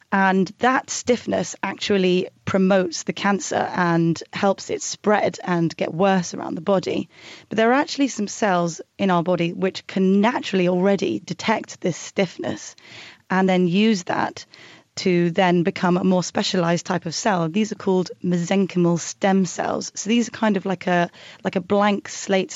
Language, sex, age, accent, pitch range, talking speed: English, female, 30-49, British, 175-205 Hz, 170 wpm